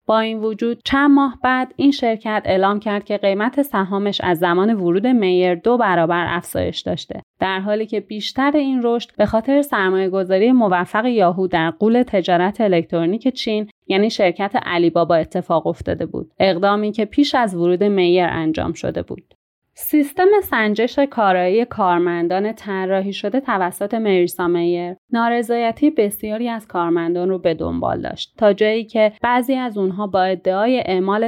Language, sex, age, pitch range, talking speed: Persian, female, 30-49, 180-230 Hz, 150 wpm